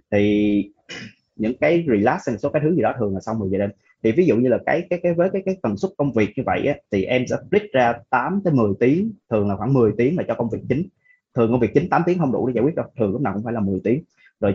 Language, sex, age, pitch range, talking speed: Vietnamese, male, 20-39, 105-135 Hz, 300 wpm